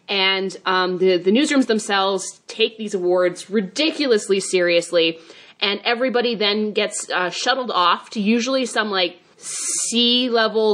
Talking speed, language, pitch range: 135 wpm, English, 185-230 Hz